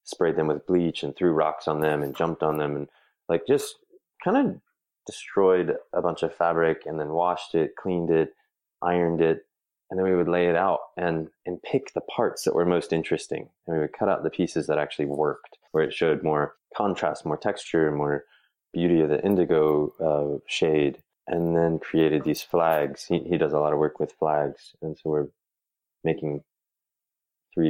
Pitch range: 75-90 Hz